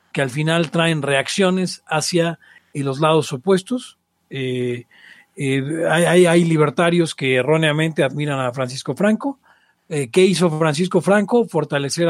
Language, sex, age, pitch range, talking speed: Spanish, male, 40-59, 145-185 Hz, 135 wpm